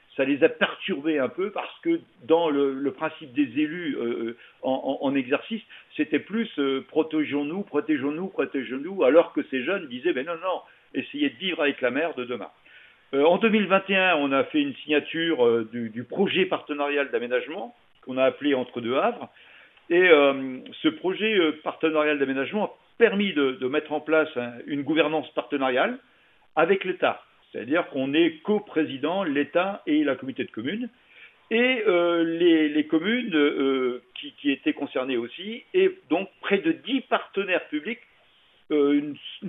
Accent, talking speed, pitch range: French, 160 wpm, 140-190 Hz